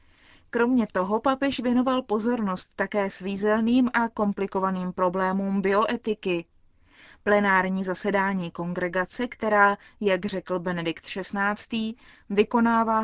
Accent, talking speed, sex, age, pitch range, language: native, 90 wpm, female, 20-39, 190-230 Hz, Czech